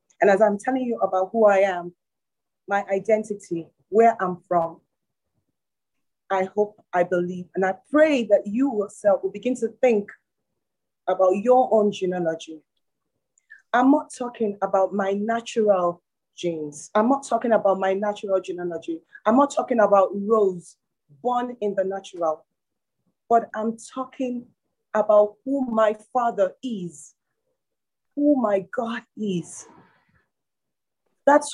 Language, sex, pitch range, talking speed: English, female, 185-250 Hz, 130 wpm